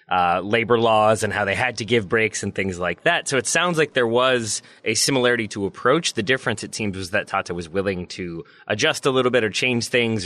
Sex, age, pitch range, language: male, 20-39, 105-130 Hz, English